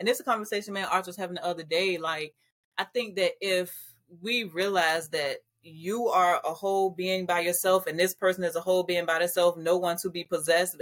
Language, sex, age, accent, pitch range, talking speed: English, female, 30-49, American, 175-225 Hz, 225 wpm